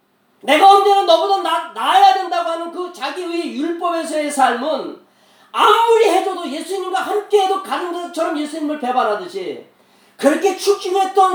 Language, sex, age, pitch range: Korean, male, 40-59, 280-370 Hz